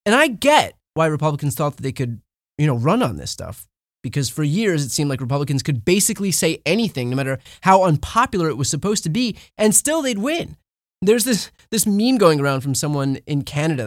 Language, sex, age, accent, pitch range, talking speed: English, male, 20-39, American, 125-190 Hz, 210 wpm